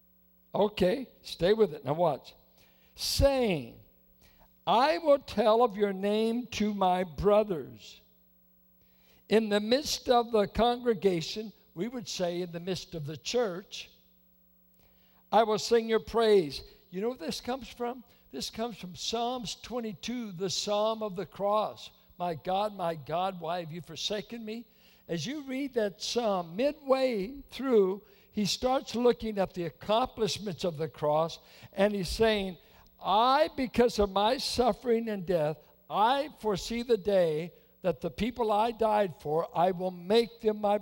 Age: 60-79